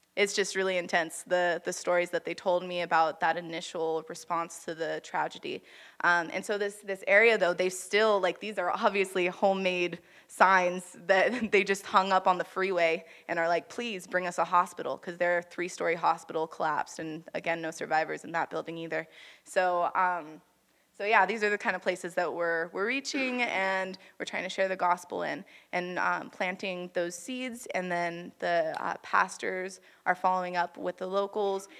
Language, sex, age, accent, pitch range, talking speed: English, female, 20-39, American, 175-200 Hz, 190 wpm